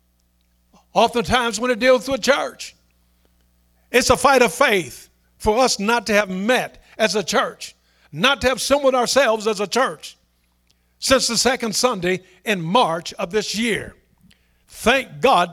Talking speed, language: 150 wpm, English